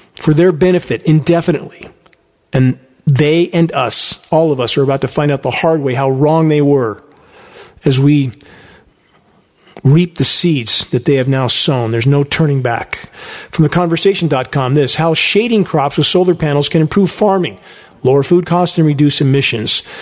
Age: 40-59